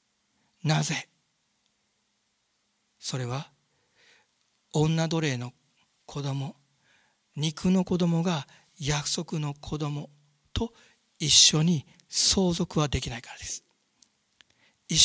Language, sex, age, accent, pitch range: Japanese, male, 60-79, native, 155-225 Hz